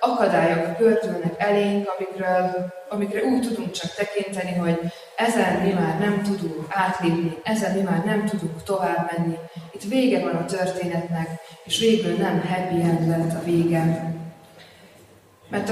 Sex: female